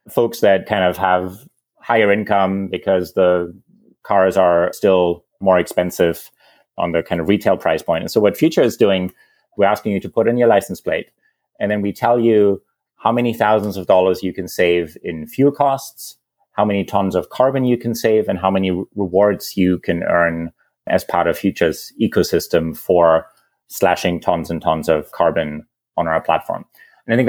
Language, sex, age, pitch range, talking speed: English, male, 30-49, 95-110 Hz, 185 wpm